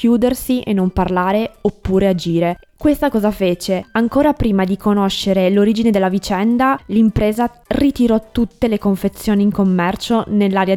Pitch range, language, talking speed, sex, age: 195-225 Hz, Italian, 135 wpm, female, 20-39